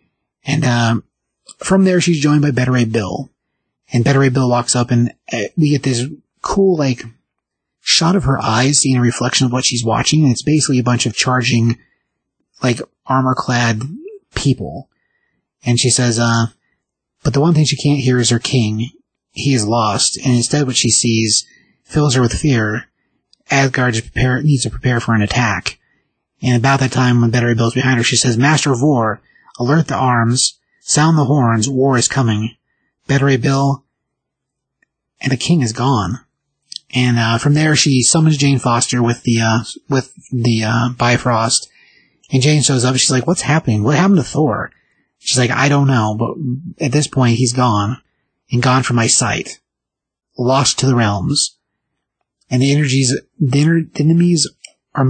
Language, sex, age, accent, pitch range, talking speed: English, male, 30-49, American, 120-145 Hz, 175 wpm